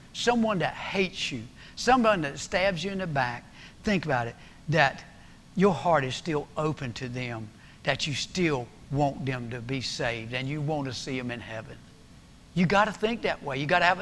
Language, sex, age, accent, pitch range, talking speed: English, male, 60-79, American, 125-165 Hz, 205 wpm